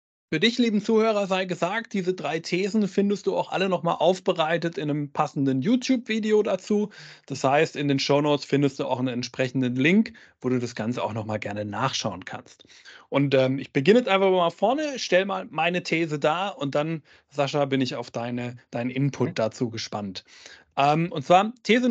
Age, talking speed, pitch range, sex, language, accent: 30-49, 185 wpm, 145-200 Hz, male, German, German